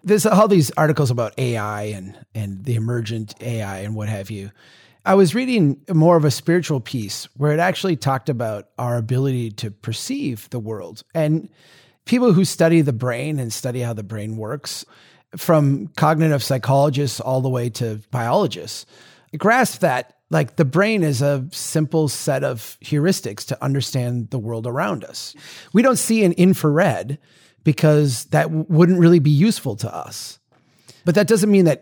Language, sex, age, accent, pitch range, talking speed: English, male, 30-49, American, 115-155 Hz, 170 wpm